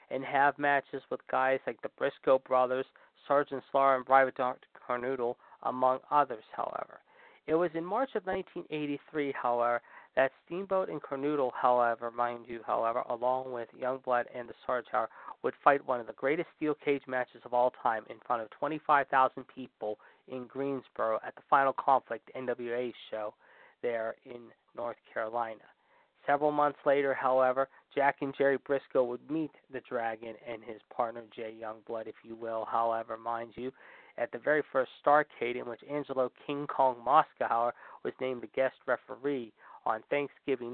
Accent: American